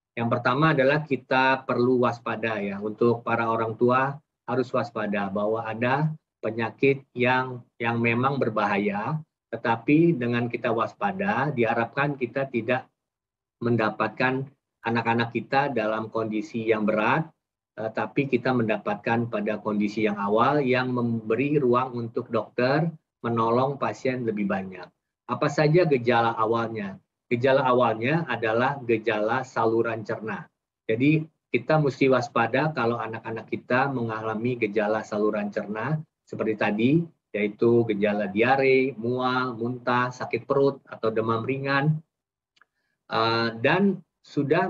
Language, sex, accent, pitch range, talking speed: Indonesian, male, native, 110-135 Hz, 115 wpm